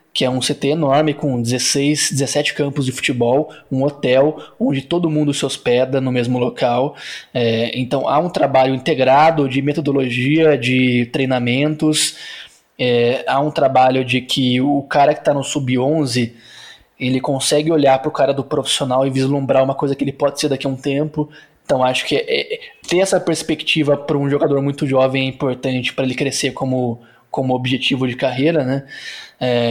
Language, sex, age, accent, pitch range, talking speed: Portuguese, male, 20-39, Brazilian, 130-155 Hz, 170 wpm